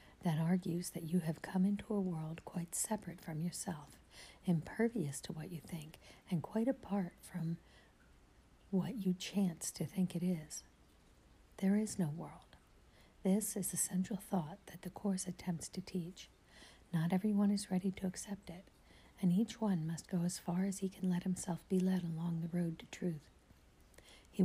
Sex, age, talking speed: female, 50-69, 175 wpm